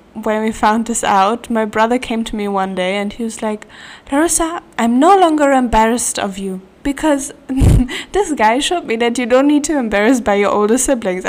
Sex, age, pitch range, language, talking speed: female, 10-29, 200-245 Hz, English, 200 wpm